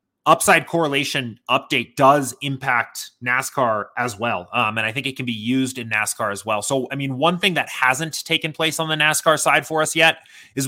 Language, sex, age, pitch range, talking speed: English, male, 20-39, 125-150 Hz, 210 wpm